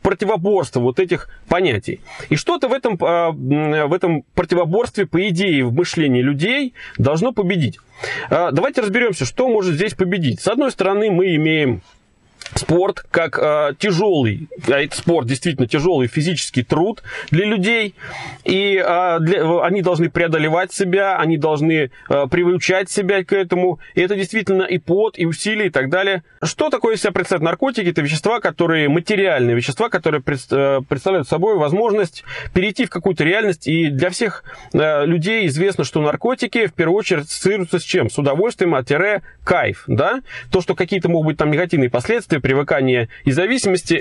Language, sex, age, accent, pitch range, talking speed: Russian, male, 30-49, native, 155-195 Hz, 160 wpm